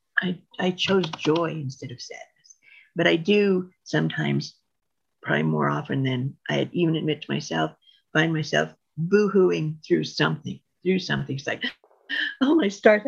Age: 50-69